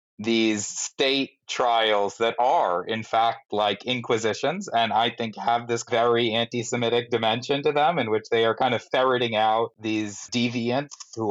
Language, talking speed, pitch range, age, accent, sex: English, 160 wpm, 115-140 Hz, 30-49, American, male